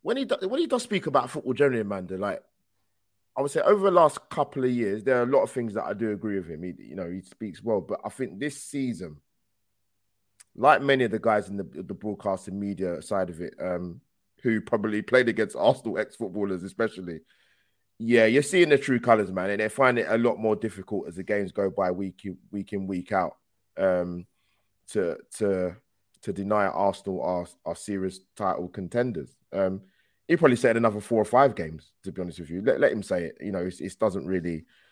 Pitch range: 95-120 Hz